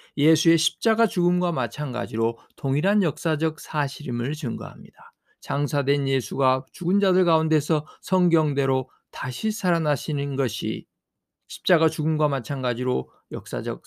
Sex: male